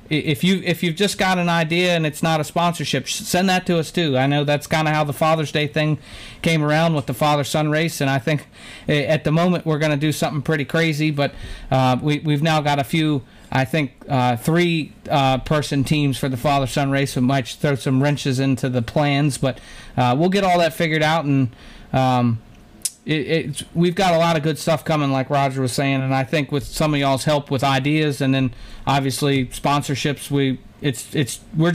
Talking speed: 220 wpm